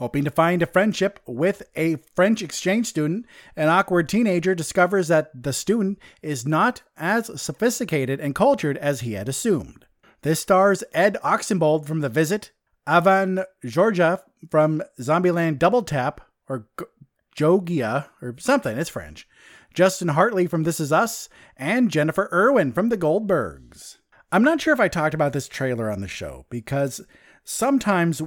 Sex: male